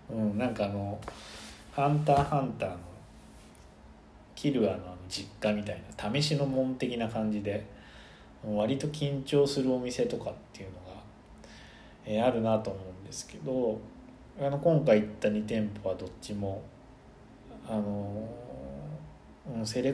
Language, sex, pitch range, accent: Japanese, male, 95-140 Hz, native